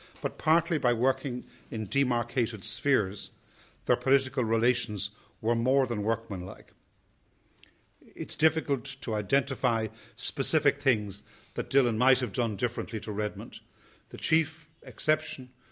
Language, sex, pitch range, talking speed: English, male, 110-130 Hz, 120 wpm